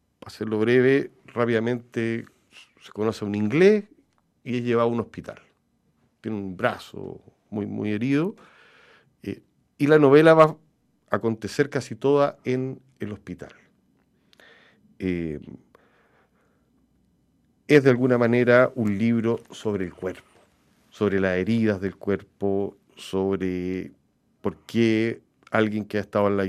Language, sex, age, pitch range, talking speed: Spanish, male, 50-69, 95-125 Hz, 125 wpm